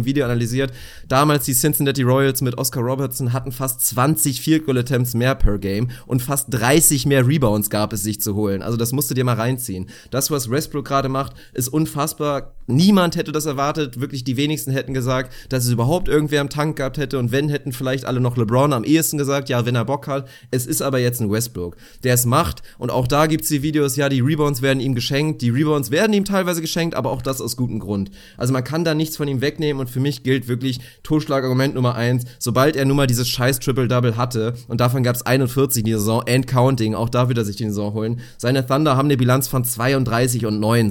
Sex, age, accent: male, 30-49, German